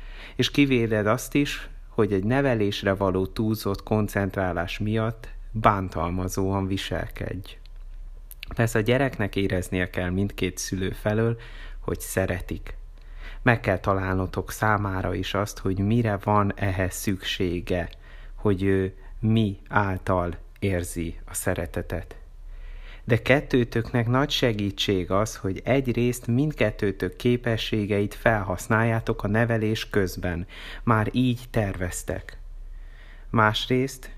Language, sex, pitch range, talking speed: Hungarian, male, 90-115 Hz, 100 wpm